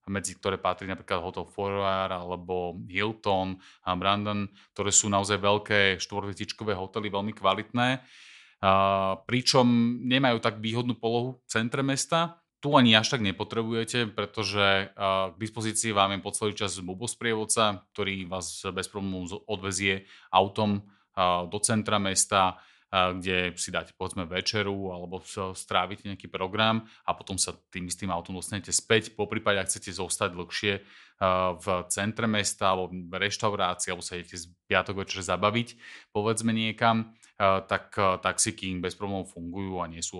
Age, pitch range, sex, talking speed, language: 30-49, 90-105 Hz, male, 140 wpm, Slovak